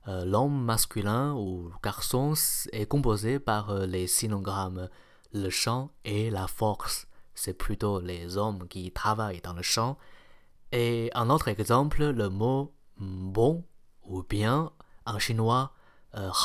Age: 20-39